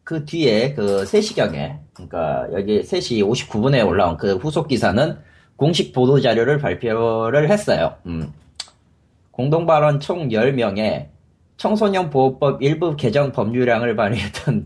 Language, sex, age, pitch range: Korean, male, 30-49, 120-180 Hz